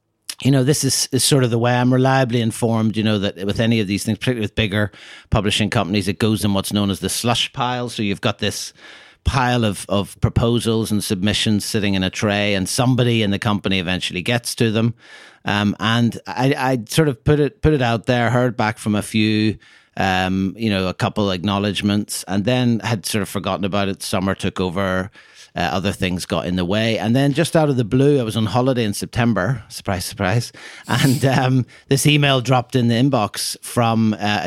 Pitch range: 100-120 Hz